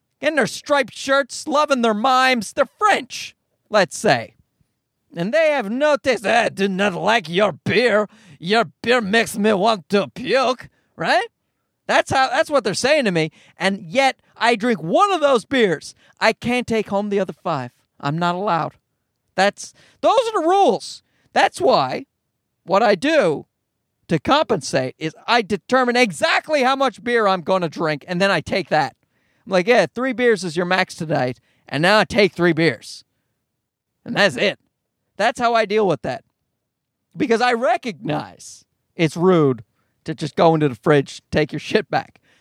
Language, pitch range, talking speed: English, 150-245 Hz, 175 wpm